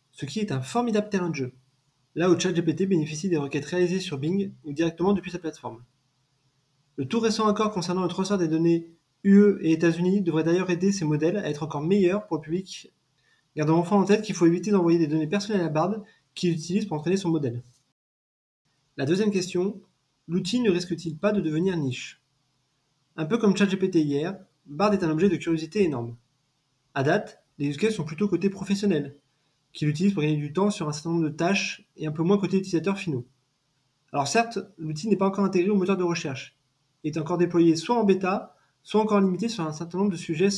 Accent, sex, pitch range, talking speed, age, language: French, male, 145-190 Hz, 210 wpm, 20-39, French